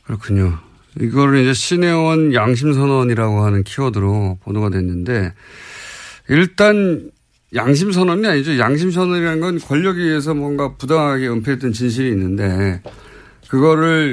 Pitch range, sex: 105-175 Hz, male